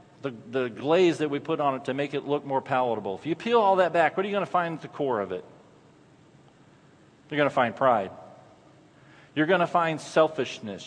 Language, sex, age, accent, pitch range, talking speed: English, male, 40-59, American, 135-175 Hz, 220 wpm